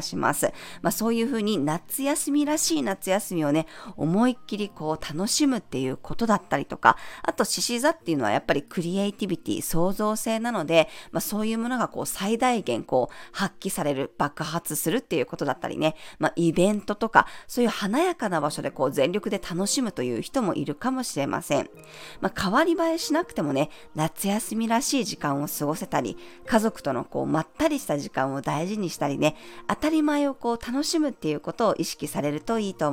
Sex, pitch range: female, 160-245 Hz